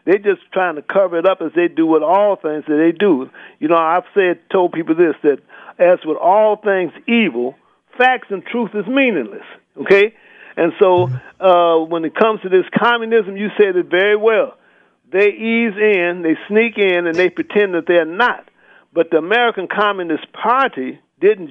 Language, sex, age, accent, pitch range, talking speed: English, male, 50-69, American, 170-230 Hz, 185 wpm